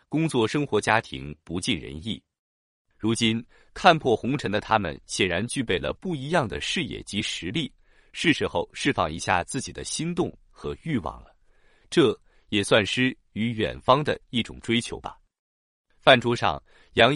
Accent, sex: native, male